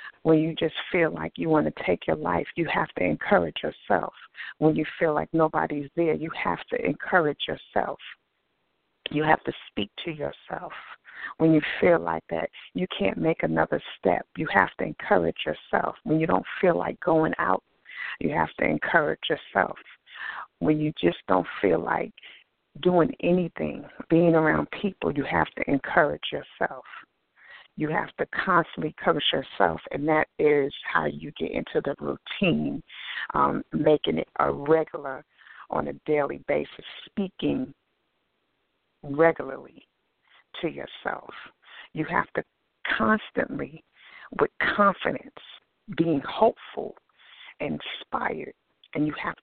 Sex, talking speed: female, 140 wpm